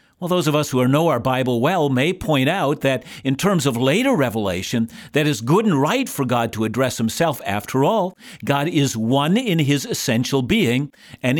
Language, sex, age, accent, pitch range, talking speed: English, male, 50-69, American, 130-175 Hz, 205 wpm